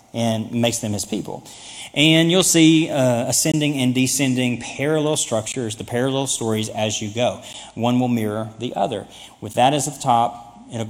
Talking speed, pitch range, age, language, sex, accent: 170 wpm, 120-160 Hz, 40-59, English, male, American